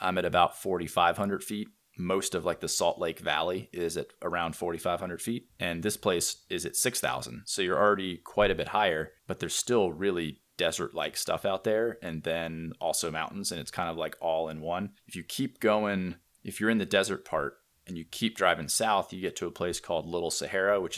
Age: 30-49